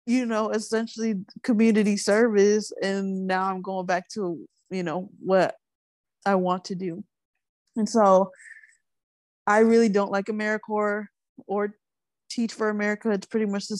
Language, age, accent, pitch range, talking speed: English, 20-39, American, 195-230 Hz, 145 wpm